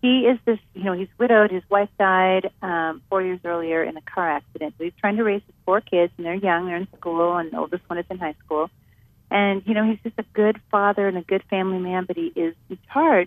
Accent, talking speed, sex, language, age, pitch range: American, 260 wpm, female, English, 40-59, 170-220 Hz